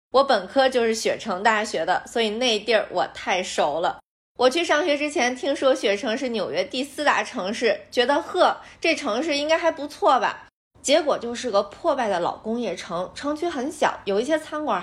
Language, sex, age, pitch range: Chinese, female, 20-39, 205-295 Hz